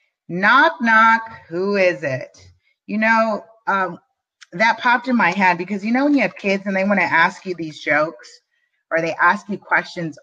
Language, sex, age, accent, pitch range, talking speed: English, female, 30-49, American, 175-250 Hz, 195 wpm